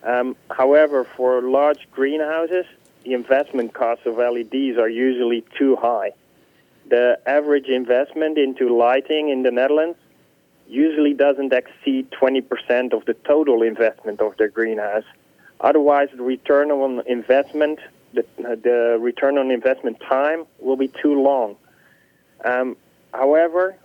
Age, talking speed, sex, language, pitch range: 30-49, 130 wpm, male, English, 125-150 Hz